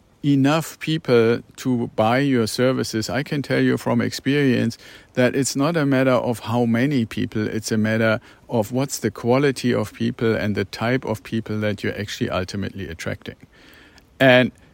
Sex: male